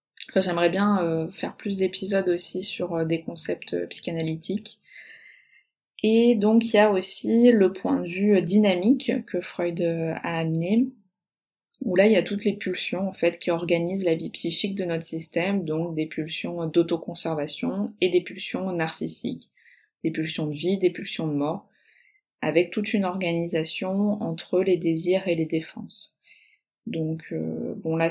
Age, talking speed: 20-39, 155 wpm